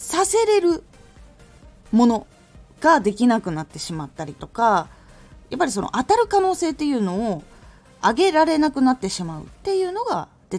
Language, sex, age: Japanese, female, 20-39